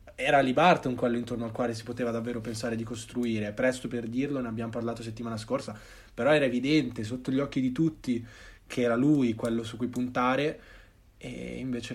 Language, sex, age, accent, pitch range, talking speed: Italian, male, 20-39, native, 110-130 Hz, 185 wpm